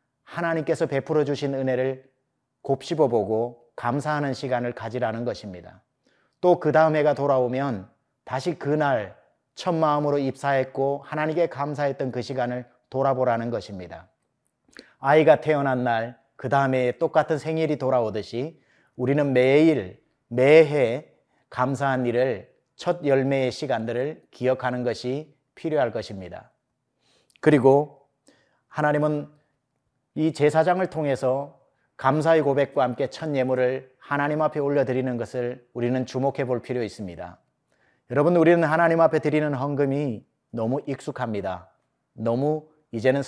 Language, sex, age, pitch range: Korean, male, 30-49, 125-155 Hz